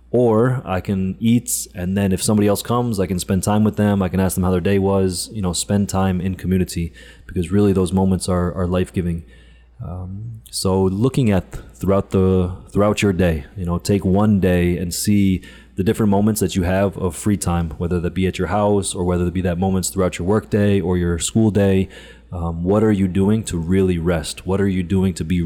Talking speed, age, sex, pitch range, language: 225 wpm, 20-39, male, 90-100 Hz, English